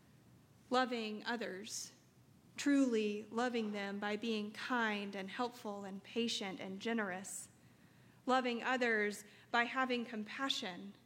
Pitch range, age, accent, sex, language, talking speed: 210-245 Hz, 30-49, American, female, English, 105 wpm